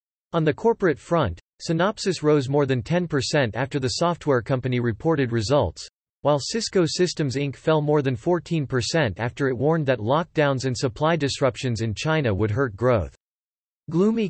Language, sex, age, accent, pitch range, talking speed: English, male, 40-59, American, 125-160 Hz, 155 wpm